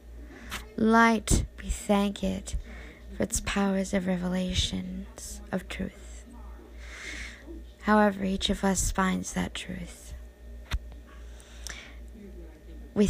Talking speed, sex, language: 85 wpm, female, English